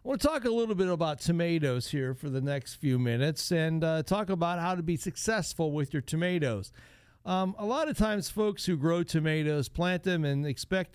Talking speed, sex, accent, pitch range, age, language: 215 wpm, male, American, 135-180 Hz, 50-69, English